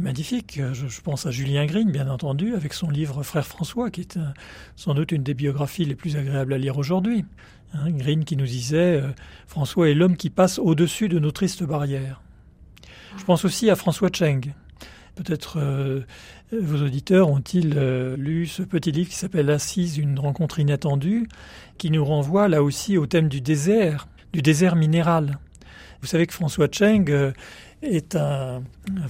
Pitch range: 140-180 Hz